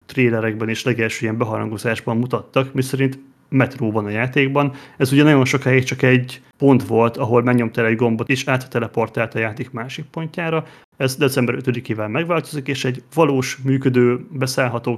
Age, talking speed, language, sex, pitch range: 30-49, 150 wpm, Hungarian, male, 115-130 Hz